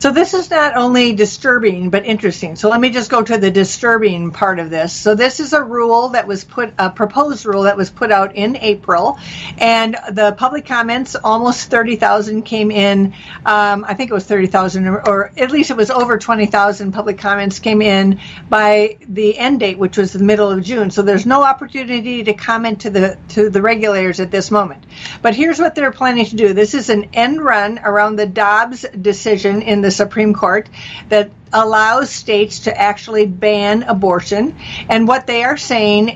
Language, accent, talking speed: English, American, 195 wpm